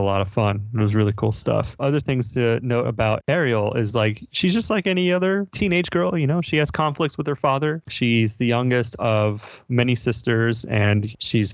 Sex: male